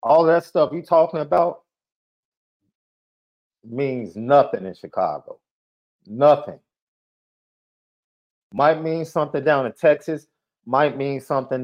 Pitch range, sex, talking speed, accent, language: 105-145 Hz, male, 105 wpm, American, English